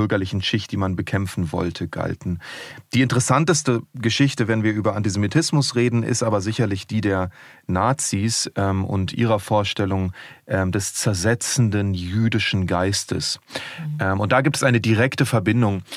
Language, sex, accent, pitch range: German, male, German, 100-125 Hz